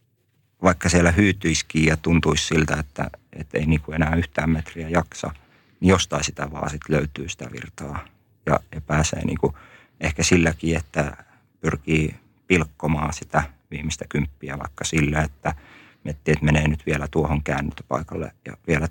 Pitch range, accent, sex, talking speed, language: 75-85 Hz, native, male, 145 wpm, Finnish